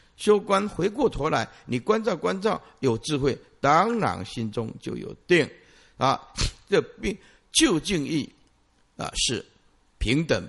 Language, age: Chinese, 50-69